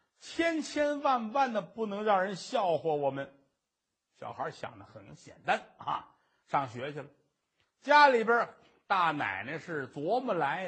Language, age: Chinese, 50-69